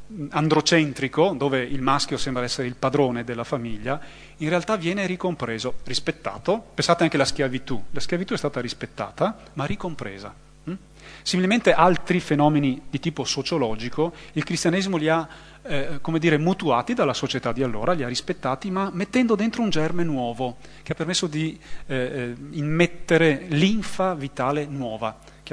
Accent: native